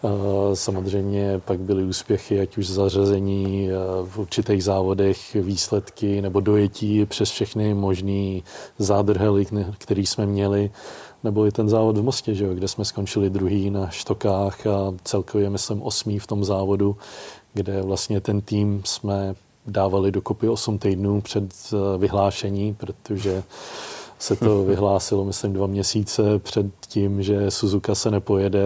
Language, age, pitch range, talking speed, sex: Czech, 20-39, 100-105 Hz, 135 wpm, male